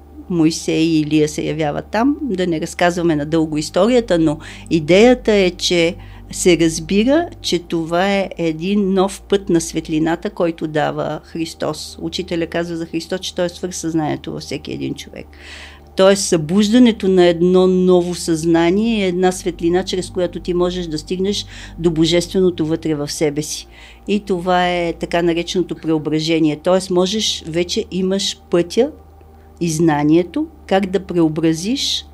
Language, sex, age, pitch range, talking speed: Bulgarian, female, 50-69, 160-185 Hz, 145 wpm